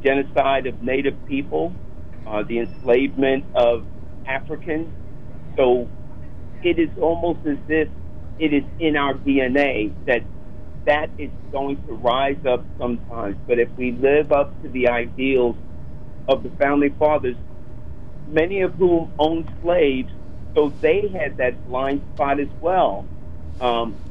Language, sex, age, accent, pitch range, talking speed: English, male, 50-69, American, 125-155 Hz, 135 wpm